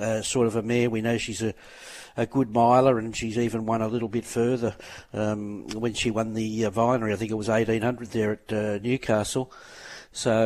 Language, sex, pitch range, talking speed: English, male, 110-120 Hz, 210 wpm